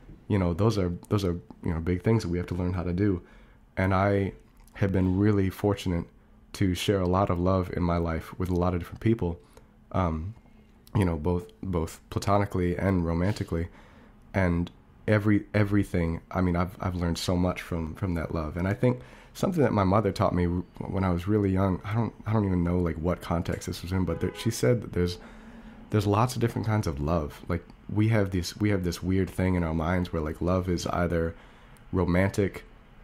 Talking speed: 215 wpm